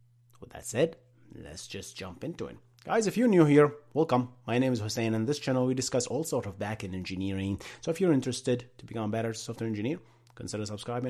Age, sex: 30-49, male